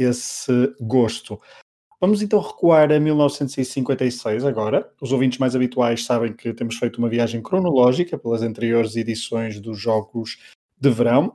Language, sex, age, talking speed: Portuguese, male, 20-39, 135 wpm